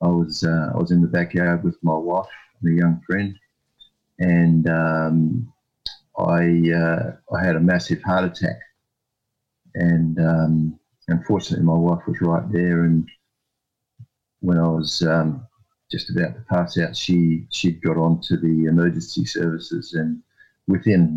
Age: 50-69